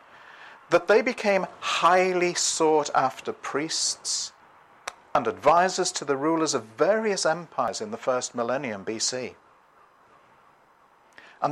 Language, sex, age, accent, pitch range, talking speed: English, male, 50-69, British, 130-180 Hz, 110 wpm